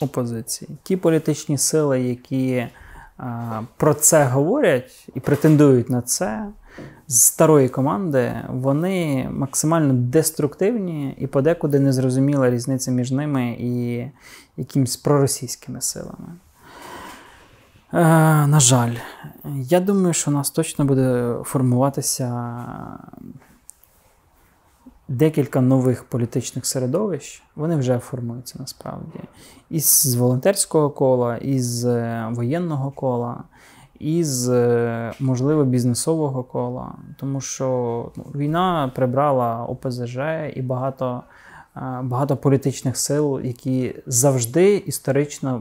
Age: 20-39